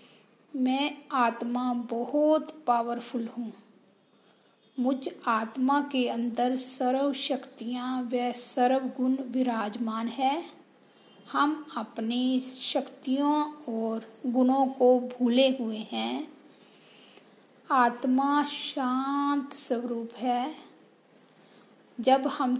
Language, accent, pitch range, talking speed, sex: Hindi, native, 235-275 Hz, 80 wpm, female